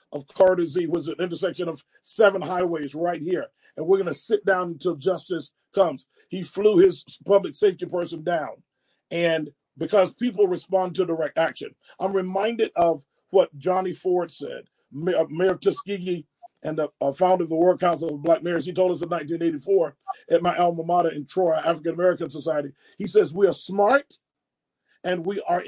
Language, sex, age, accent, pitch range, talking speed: English, male, 40-59, American, 170-220 Hz, 170 wpm